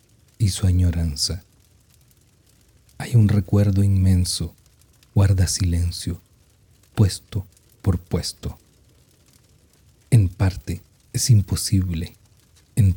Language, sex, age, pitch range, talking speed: Spanish, male, 40-59, 95-110 Hz, 80 wpm